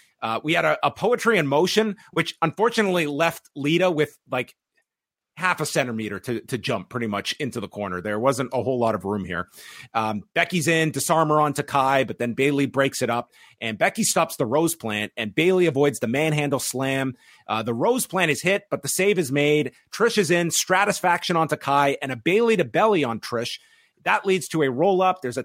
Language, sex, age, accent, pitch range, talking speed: English, male, 30-49, American, 130-170 Hz, 210 wpm